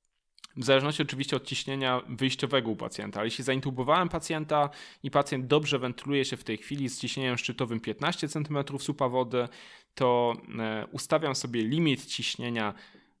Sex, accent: male, native